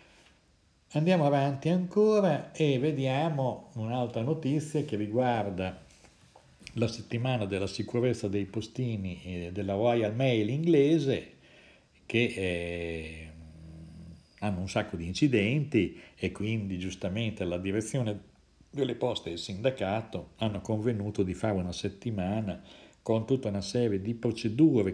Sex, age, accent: male, 50-69, native